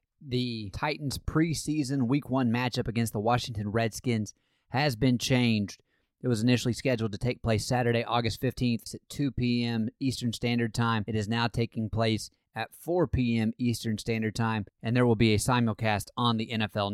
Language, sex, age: English, male, 30-49